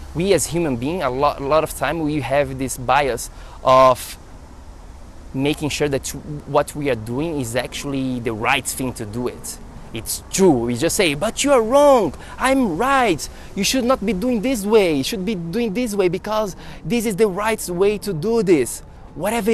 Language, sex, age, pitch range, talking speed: English, male, 20-39, 125-180 Hz, 190 wpm